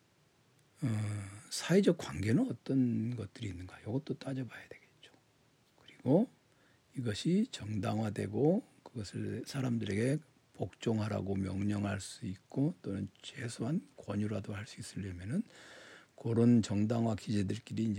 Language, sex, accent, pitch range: Korean, male, native, 100-130 Hz